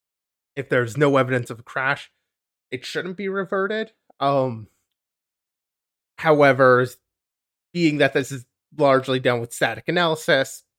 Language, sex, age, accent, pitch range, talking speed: English, male, 20-39, American, 125-165 Hz, 120 wpm